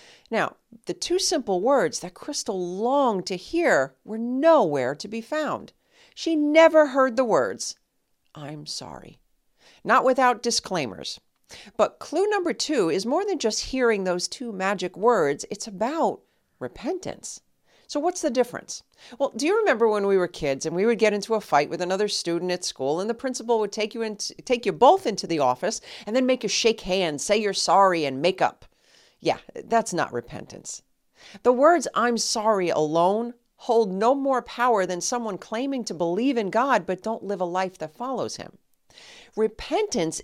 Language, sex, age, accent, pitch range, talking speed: English, female, 50-69, American, 180-255 Hz, 175 wpm